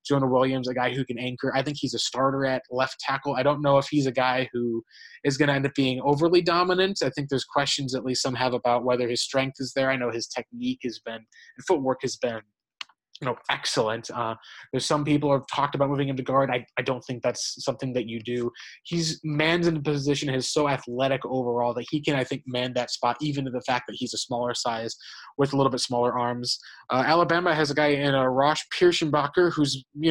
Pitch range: 125-145 Hz